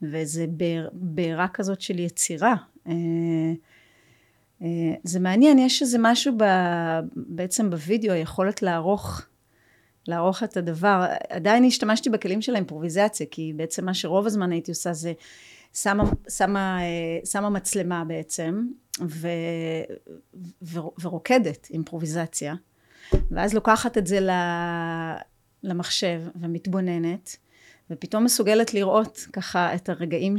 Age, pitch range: 30-49, 165-210 Hz